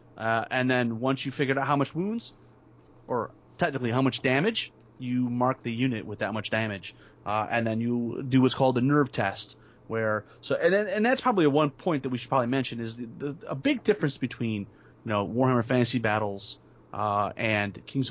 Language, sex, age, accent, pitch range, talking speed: English, male, 30-49, American, 110-140 Hz, 200 wpm